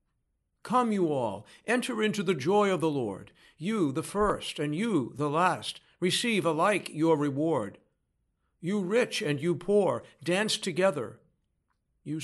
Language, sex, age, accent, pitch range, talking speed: English, male, 60-79, American, 140-190 Hz, 140 wpm